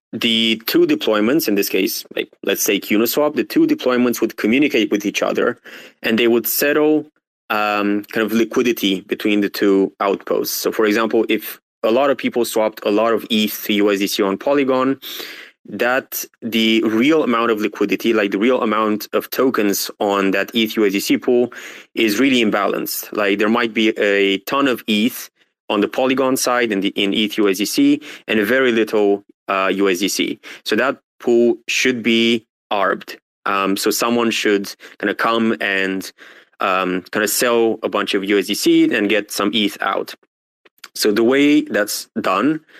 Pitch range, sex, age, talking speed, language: 100-120 Hz, male, 20-39, 170 wpm, English